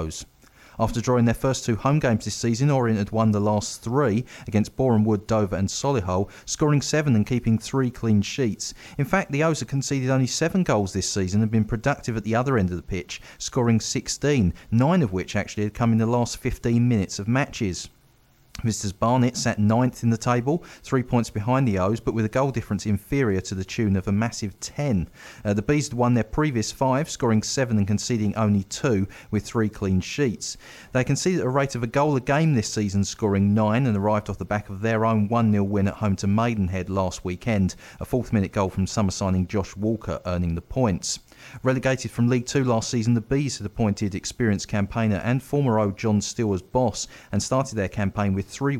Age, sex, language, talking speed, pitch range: 40-59, male, English, 215 wpm, 100-125 Hz